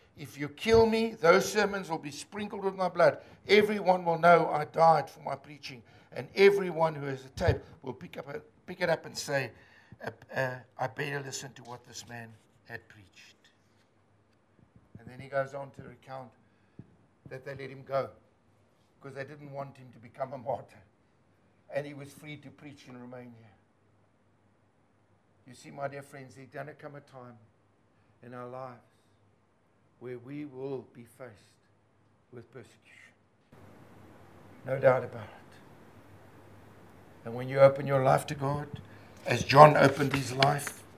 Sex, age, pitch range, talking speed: male, 60-79, 110-140 Hz, 165 wpm